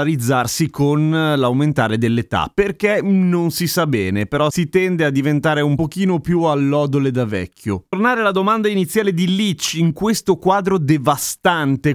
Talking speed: 145 wpm